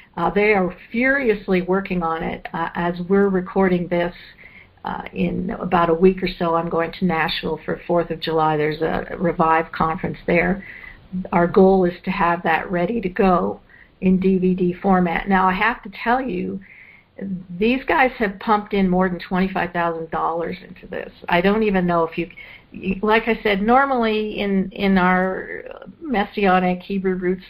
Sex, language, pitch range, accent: female, English, 175-200 Hz, American